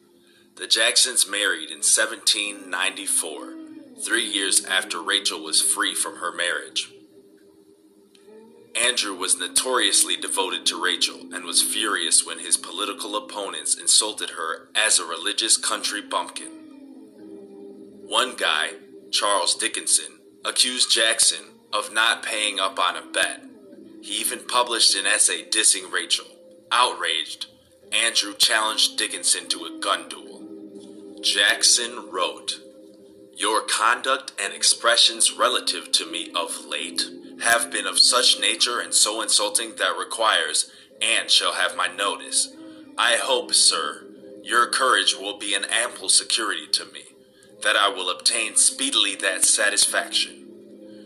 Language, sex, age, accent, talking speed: English, male, 30-49, American, 125 wpm